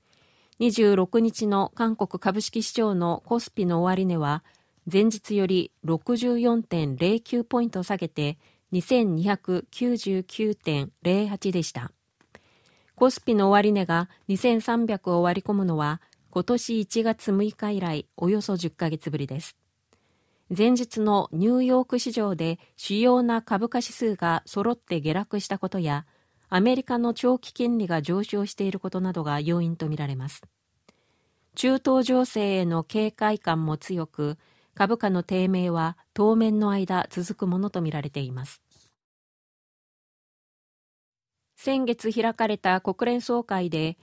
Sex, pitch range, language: female, 170-225 Hz, Japanese